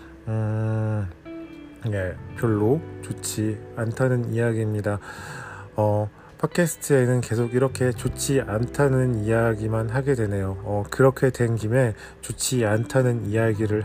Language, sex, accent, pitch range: Korean, male, native, 105-135 Hz